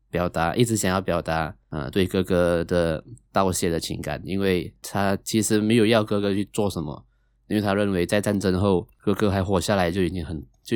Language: Chinese